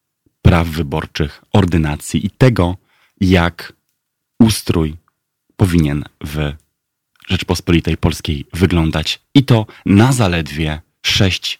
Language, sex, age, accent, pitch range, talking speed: Polish, male, 30-49, native, 80-105 Hz, 90 wpm